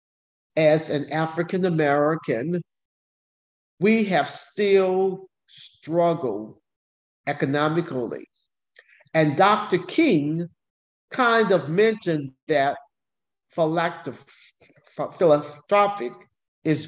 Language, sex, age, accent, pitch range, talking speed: English, male, 50-69, American, 135-175 Hz, 60 wpm